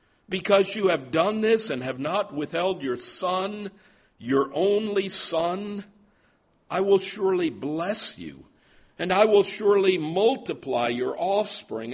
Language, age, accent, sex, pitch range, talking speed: English, 60-79, American, male, 115-190 Hz, 130 wpm